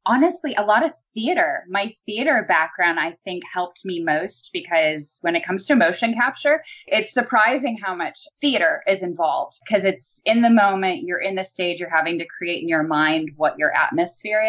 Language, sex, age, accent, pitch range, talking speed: English, female, 10-29, American, 170-235 Hz, 190 wpm